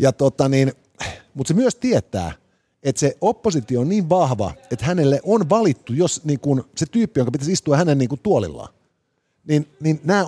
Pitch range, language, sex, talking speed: 125-170 Hz, Finnish, male, 180 wpm